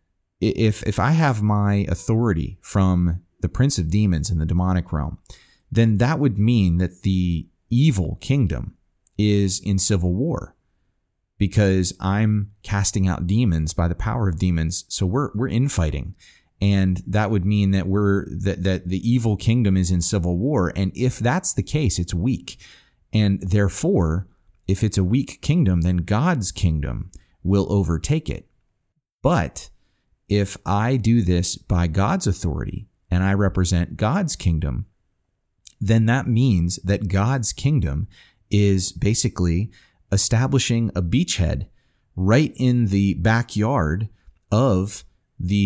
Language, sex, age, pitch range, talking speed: English, male, 30-49, 90-115 Hz, 140 wpm